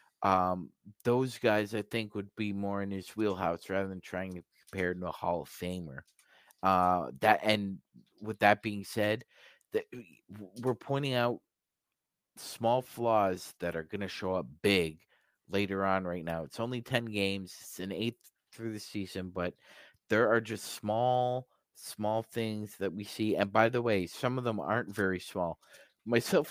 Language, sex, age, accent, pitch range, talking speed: English, male, 30-49, American, 90-115 Hz, 170 wpm